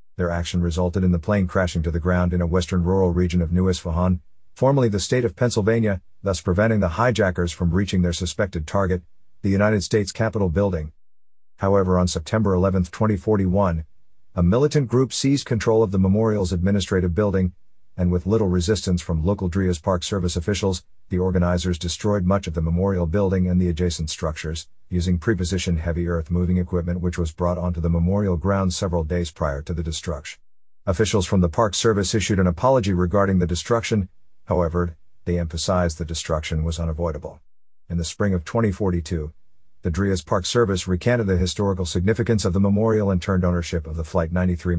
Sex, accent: male, American